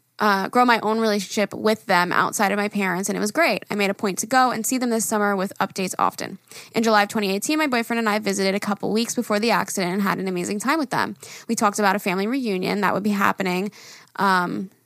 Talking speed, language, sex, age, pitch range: 250 wpm, English, female, 10-29, 195-225 Hz